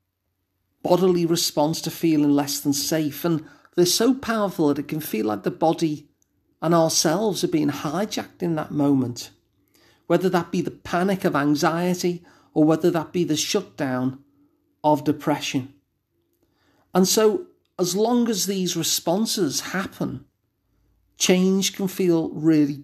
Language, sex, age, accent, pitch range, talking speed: English, male, 50-69, British, 145-185 Hz, 140 wpm